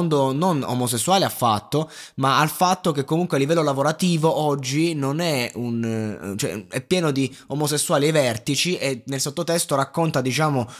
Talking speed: 150 wpm